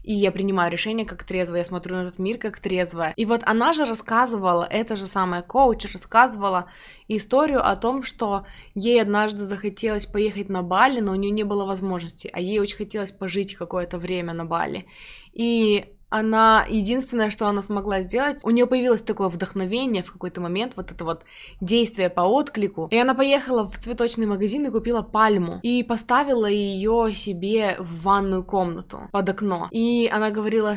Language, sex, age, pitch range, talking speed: Russian, female, 20-39, 185-220 Hz, 175 wpm